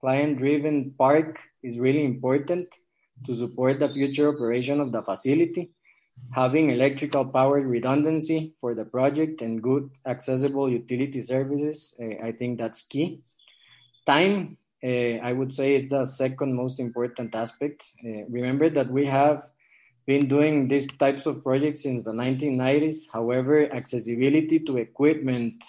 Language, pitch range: English, 120-145 Hz